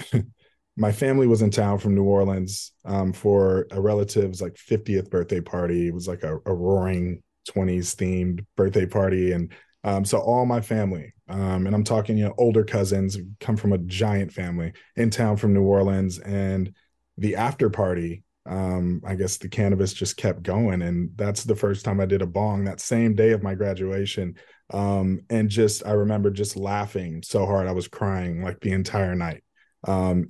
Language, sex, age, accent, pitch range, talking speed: English, male, 20-39, American, 95-110 Hz, 185 wpm